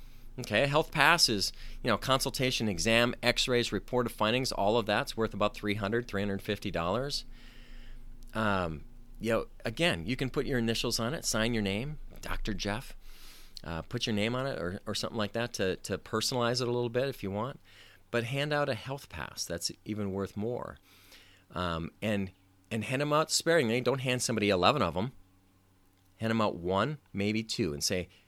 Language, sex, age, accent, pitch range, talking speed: English, male, 40-59, American, 100-130 Hz, 185 wpm